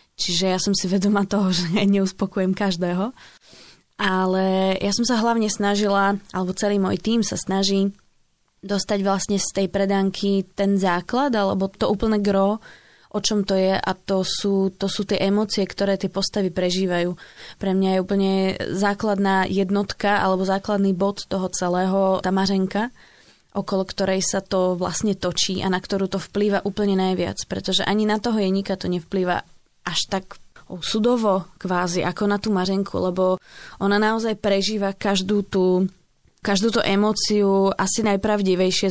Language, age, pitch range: Slovak, 20-39, 190-205 Hz